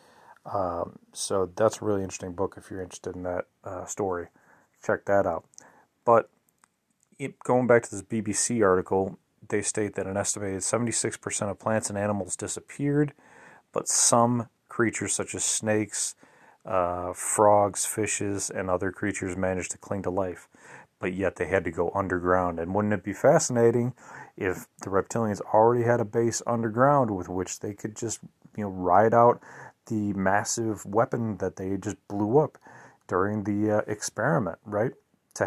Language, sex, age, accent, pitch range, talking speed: English, male, 30-49, American, 95-115 Hz, 160 wpm